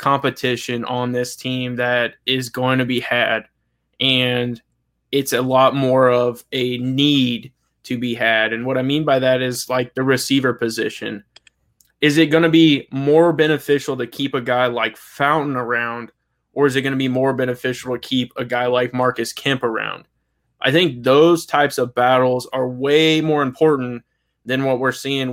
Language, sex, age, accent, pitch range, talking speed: English, male, 20-39, American, 120-135 Hz, 180 wpm